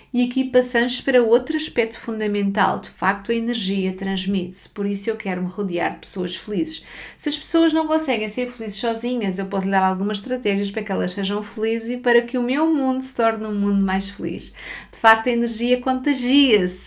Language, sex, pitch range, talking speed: Portuguese, female, 195-235 Hz, 205 wpm